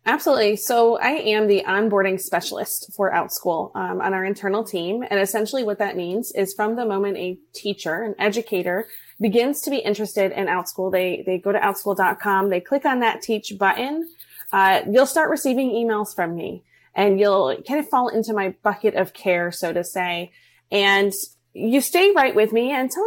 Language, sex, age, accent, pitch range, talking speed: English, female, 20-39, American, 190-230 Hz, 185 wpm